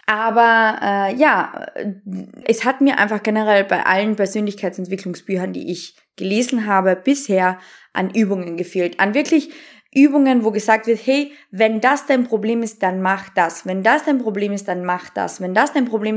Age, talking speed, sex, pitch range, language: 20-39, 170 wpm, female, 185-245 Hz, German